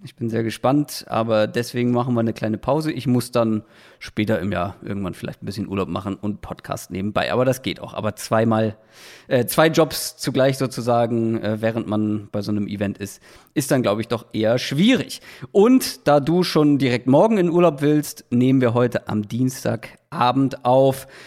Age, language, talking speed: 40-59, German, 190 wpm